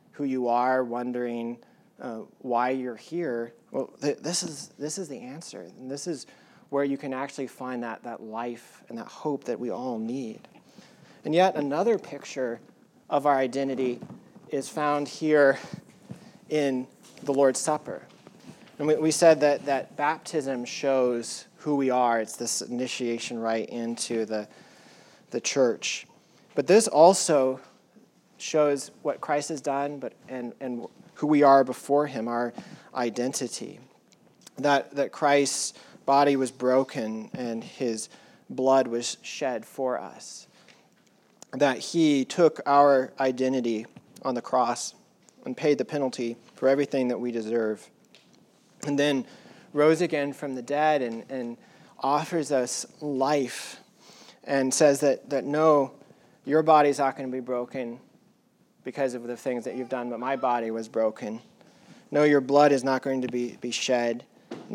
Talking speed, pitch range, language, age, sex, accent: 150 wpm, 120-145 Hz, English, 30-49, male, American